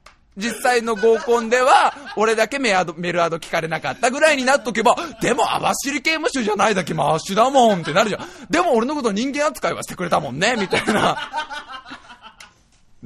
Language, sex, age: Japanese, male, 20-39